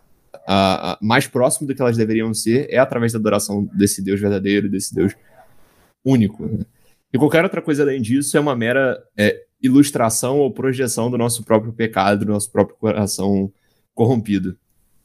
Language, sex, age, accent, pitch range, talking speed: Portuguese, male, 20-39, Brazilian, 105-145 Hz, 165 wpm